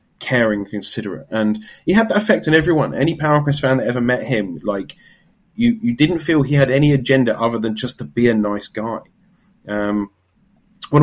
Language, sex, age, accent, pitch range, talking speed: English, male, 30-49, British, 110-145 Hz, 190 wpm